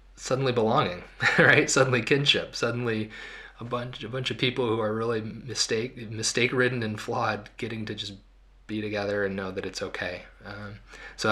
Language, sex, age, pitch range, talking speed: English, male, 20-39, 100-125 Hz, 165 wpm